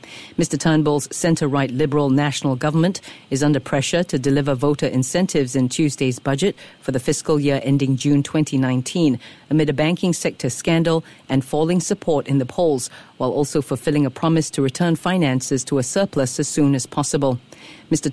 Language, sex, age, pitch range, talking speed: English, female, 40-59, 140-160 Hz, 165 wpm